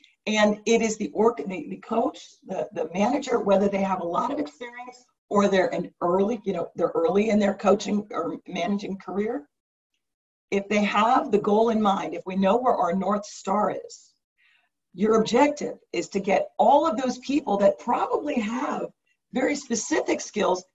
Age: 50-69